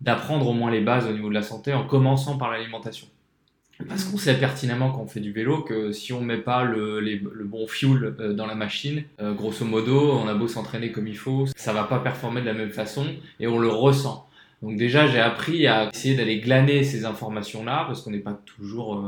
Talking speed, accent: 230 wpm, French